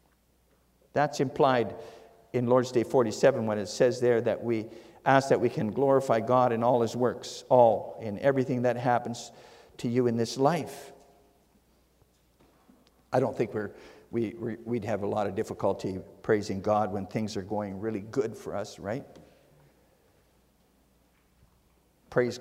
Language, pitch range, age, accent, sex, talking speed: English, 110-160 Hz, 50-69, American, male, 140 wpm